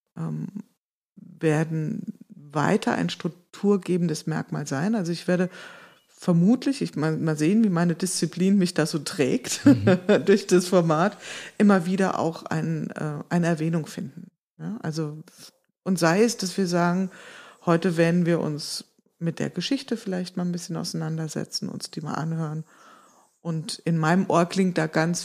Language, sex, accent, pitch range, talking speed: German, female, German, 160-195 Hz, 145 wpm